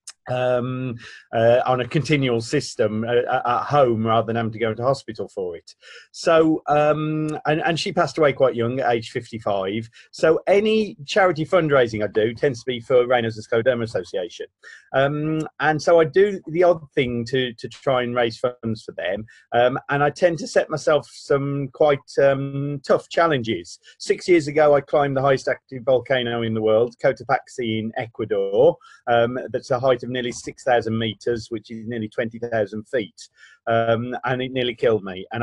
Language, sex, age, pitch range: English, male, 40-59, 115-155 Hz